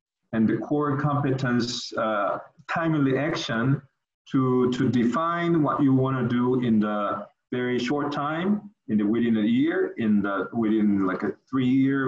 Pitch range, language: 120-150 Hz, English